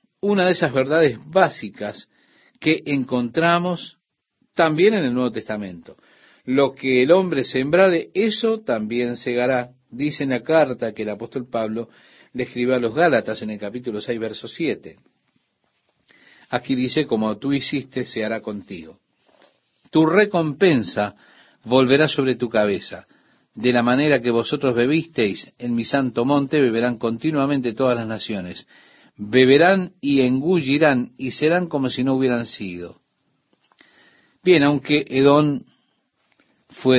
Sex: male